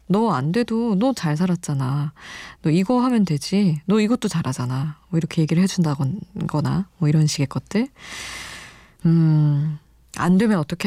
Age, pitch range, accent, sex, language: 20-39, 150-190 Hz, native, female, Korean